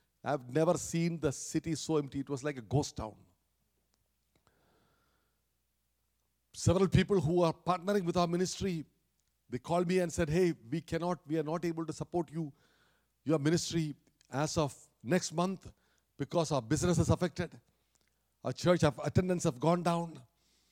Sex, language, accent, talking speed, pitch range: male, English, Indian, 155 wpm, 130-180 Hz